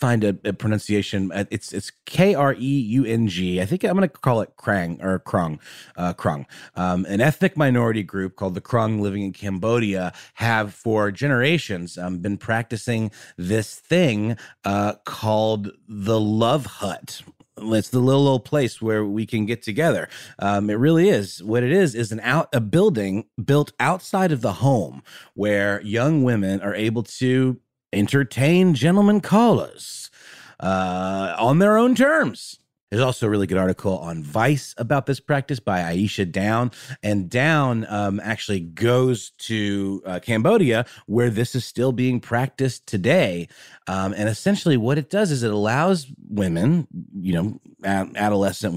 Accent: American